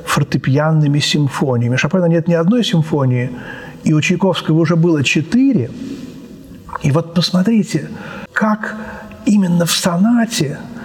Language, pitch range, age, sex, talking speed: Russian, 155-200 Hz, 50-69, male, 110 wpm